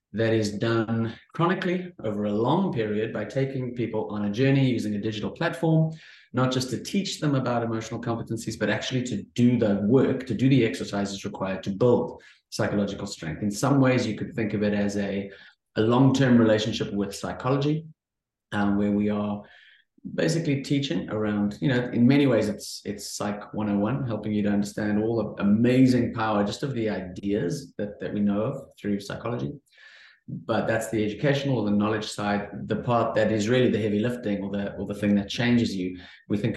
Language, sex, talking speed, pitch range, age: English, male, 190 wpm, 100-120 Hz, 30-49